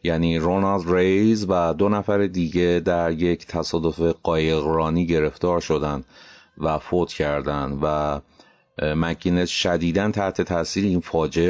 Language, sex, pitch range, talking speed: Persian, male, 85-105 Hz, 120 wpm